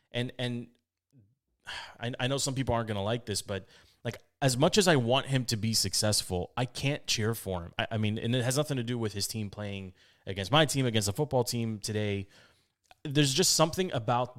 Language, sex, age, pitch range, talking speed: English, male, 30-49, 100-130 Hz, 220 wpm